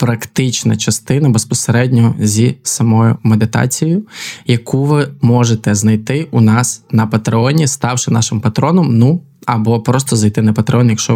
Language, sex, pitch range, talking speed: Ukrainian, male, 115-135 Hz, 130 wpm